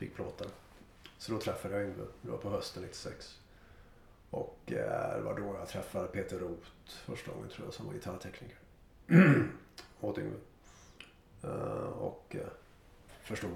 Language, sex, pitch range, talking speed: Swedish, male, 95-115 Hz, 135 wpm